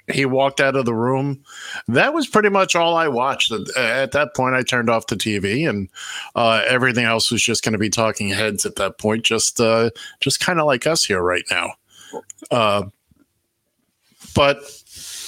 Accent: American